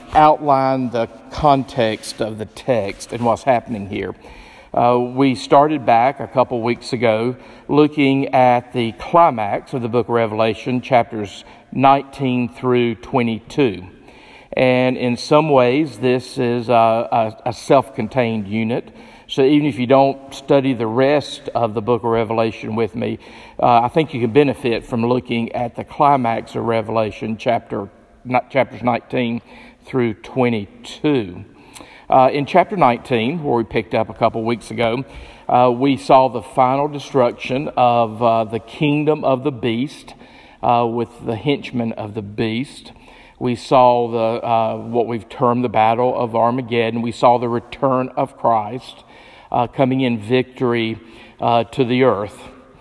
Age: 50-69